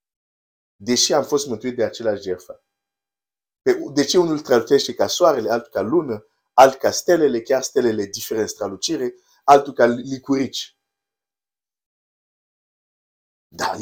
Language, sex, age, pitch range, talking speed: Romanian, male, 50-69, 100-150 Hz, 115 wpm